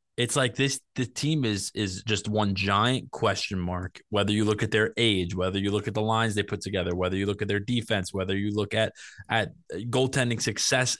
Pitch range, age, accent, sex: 100-120 Hz, 20-39, American, male